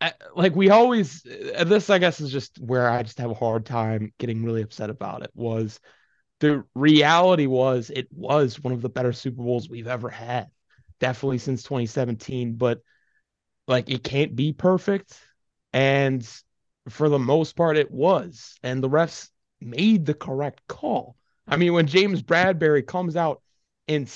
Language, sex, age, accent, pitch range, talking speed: English, male, 20-39, American, 125-165 Hz, 165 wpm